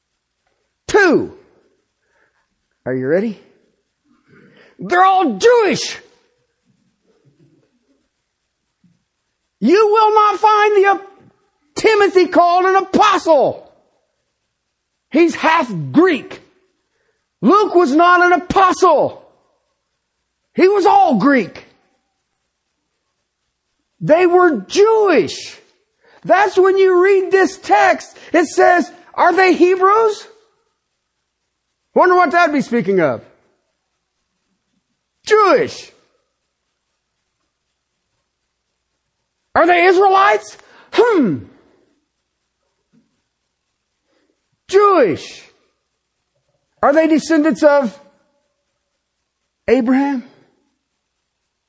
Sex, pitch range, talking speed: male, 305-410 Hz, 70 wpm